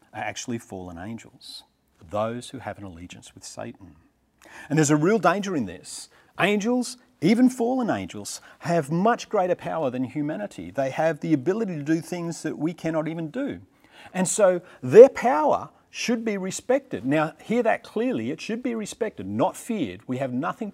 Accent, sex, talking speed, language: Australian, male, 170 wpm, English